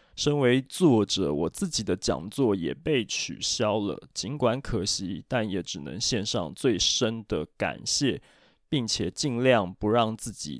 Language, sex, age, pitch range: Chinese, male, 20-39, 95-125 Hz